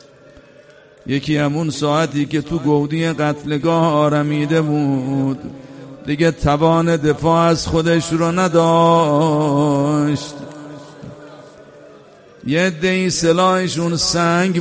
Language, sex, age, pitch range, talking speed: Persian, male, 50-69, 145-165 Hz, 80 wpm